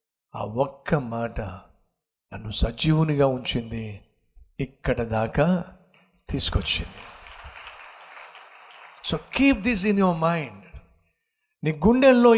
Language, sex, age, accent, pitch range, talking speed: Telugu, male, 60-79, native, 135-210 Hz, 80 wpm